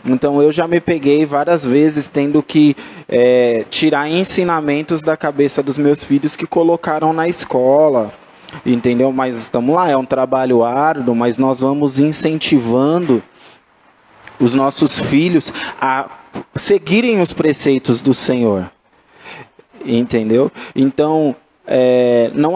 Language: Portuguese